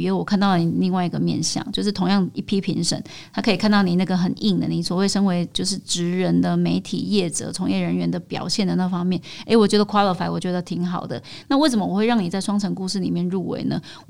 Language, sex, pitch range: Chinese, female, 180-210 Hz